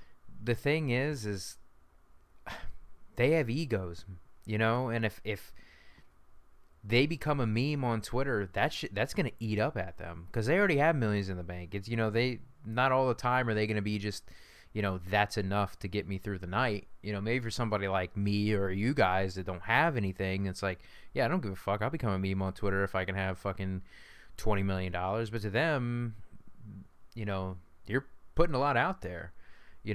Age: 20-39